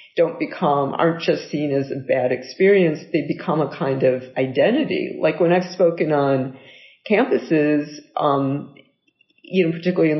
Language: English